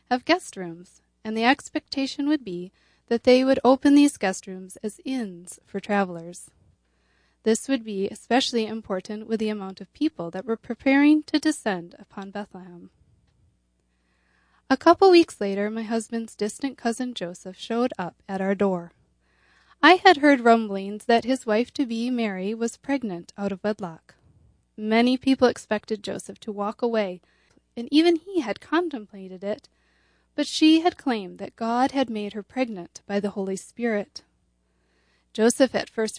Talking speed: 155 wpm